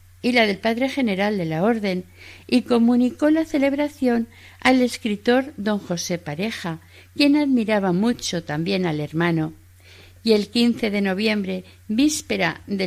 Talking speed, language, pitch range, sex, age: 140 wpm, Spanish, 150-230 Hz, female, 50-69